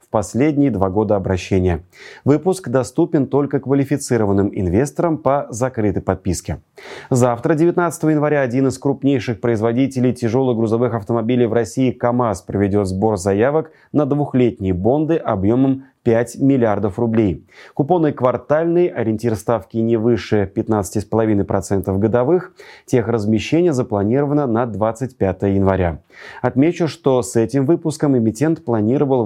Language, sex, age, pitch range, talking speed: Russian, male, 30-49, 110-145 Hz, 115 wpm